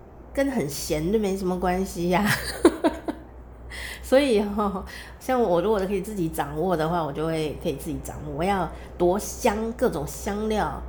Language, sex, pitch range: Chinese, female, 160-225 Hz